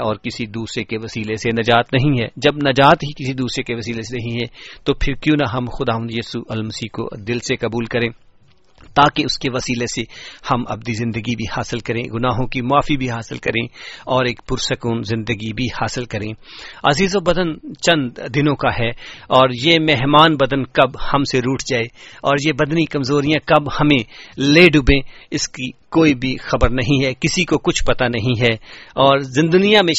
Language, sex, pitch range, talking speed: English, male, 120-145 Hz, 180 wpm